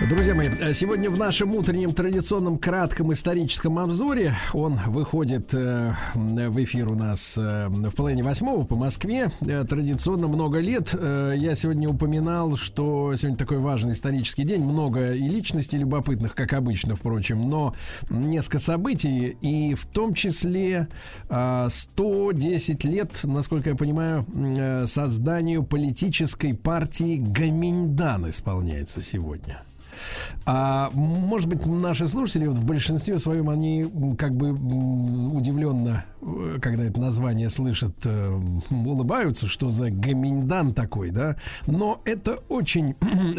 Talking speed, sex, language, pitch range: 115 wpm, male, Russian, 125-160 Hz